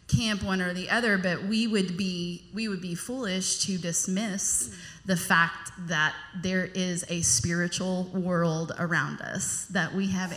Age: 20-39